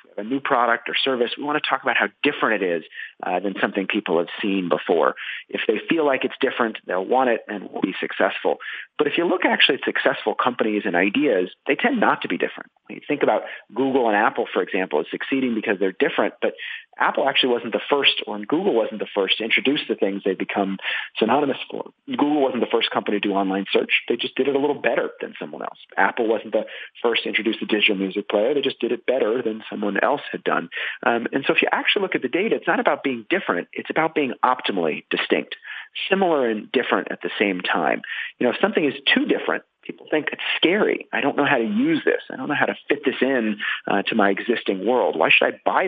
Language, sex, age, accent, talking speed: English, male, 40-59, American, 240 wpm